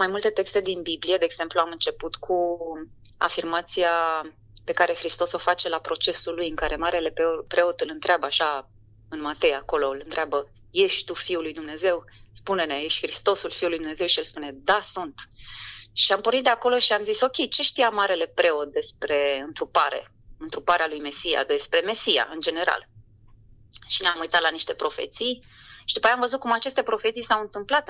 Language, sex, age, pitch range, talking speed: Romanian, female, 30-49, 150-210 Hz, 185 wpm